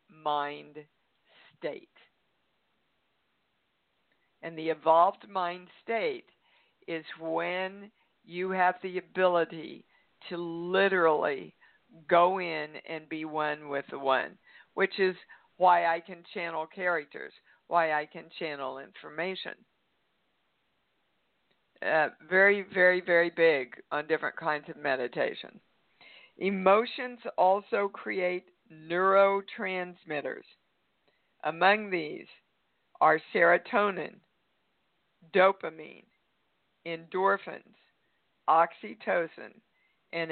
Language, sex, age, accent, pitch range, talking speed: English, female, 60-79, American, 165-190 Hz, 85 wpm